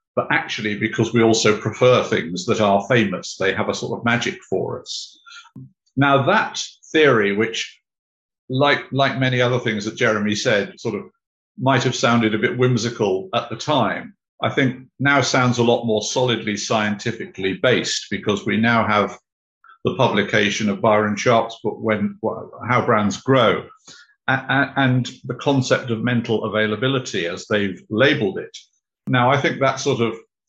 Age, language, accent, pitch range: 50-69, English, British, 105-125 Hz